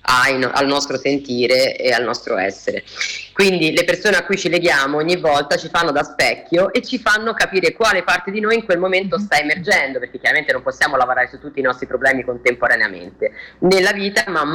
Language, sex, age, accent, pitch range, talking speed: Italian, female, 30-49, native, 130-210 Hz, 195 wpm